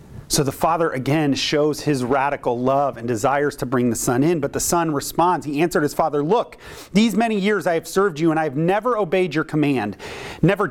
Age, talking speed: 30-49, 215 wpm